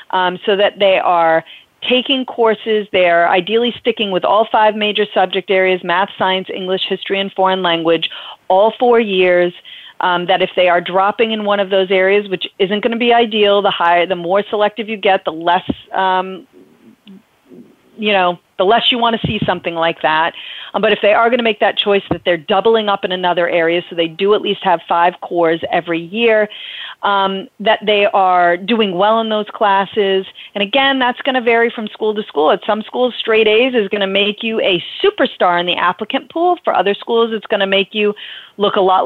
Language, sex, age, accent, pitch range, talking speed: English, female, 40-59, American, 185-225 Hz, 210 wpm